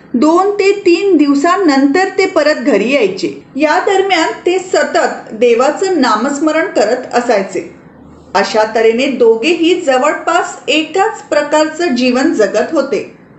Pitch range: 255-335 Hz